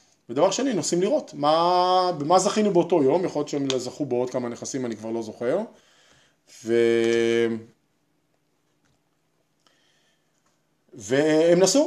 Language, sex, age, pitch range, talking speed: English, male, 20-39, 110-150 Hz, 85 wpm